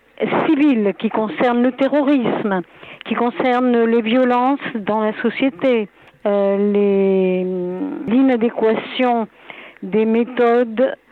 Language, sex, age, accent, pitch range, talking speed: French, female, 50-69, French, 205-260 Hz, 90 wpm